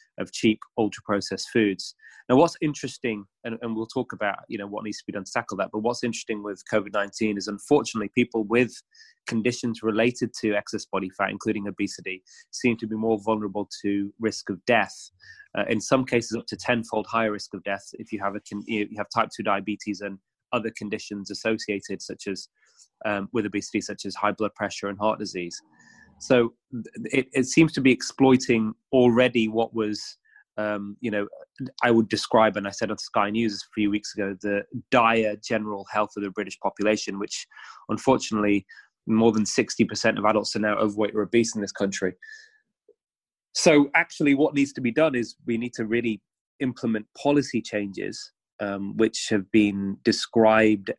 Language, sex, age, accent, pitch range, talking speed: English, male, 20-39, British, 105-120 Hz, 185 wpm